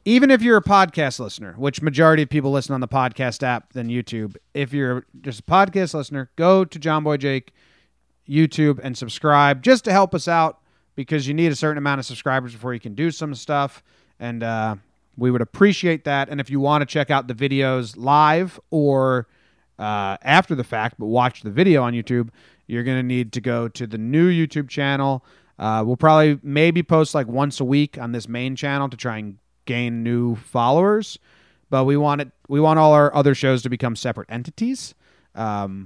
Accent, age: American, 30-49